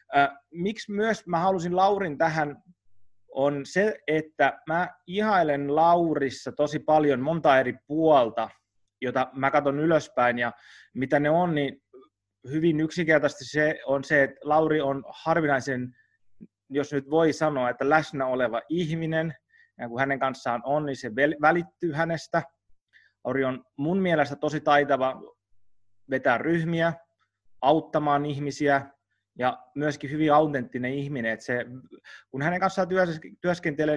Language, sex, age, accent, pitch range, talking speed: Finnish, male, 30-49, native, 120-155 Hz, 130 wpm